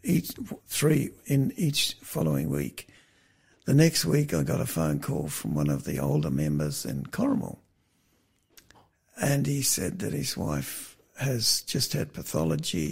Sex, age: male, 60-79